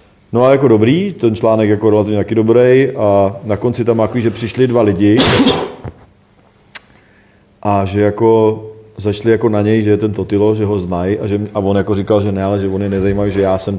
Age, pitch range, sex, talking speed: 30-49, 105-115 Hz, male, 205 wpm